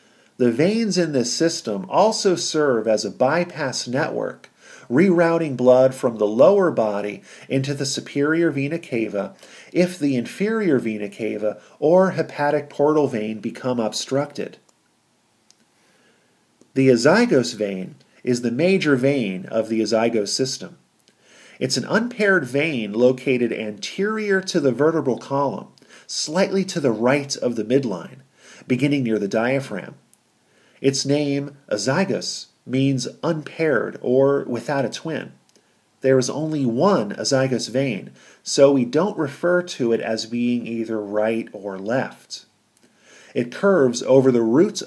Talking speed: 130 wpm